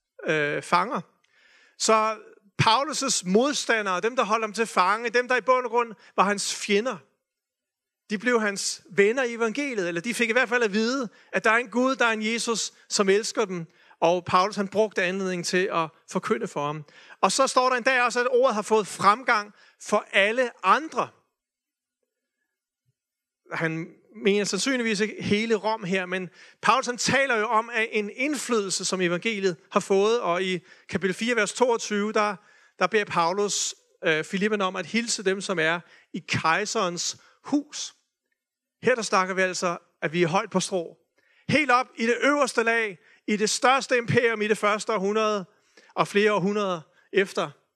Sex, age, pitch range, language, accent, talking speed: male, 40-59, 185-235 Hz, Danish, native, 175 wpm